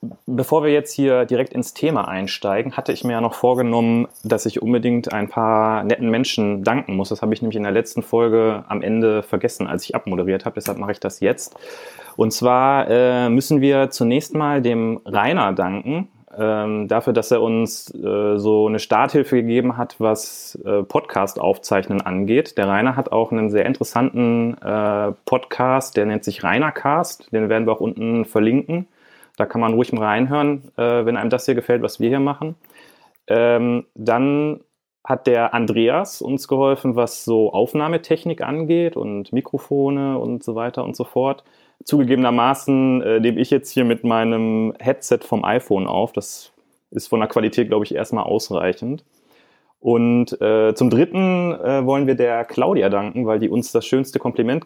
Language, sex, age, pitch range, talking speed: German, male, 30-49, 110-135 Hz, 170 wpm